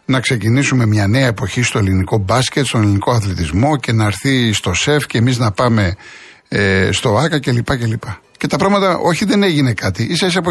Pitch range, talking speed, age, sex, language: 130-185 Hz, 205 wpm, 60-79, male, Greek